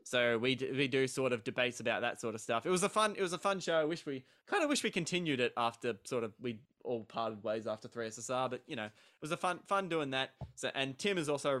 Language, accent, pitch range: English, Australian, 115-140 Hz